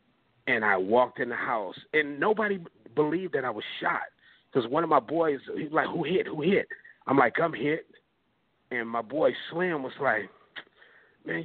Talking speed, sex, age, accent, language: 190 wpm, male, 40-59, American, English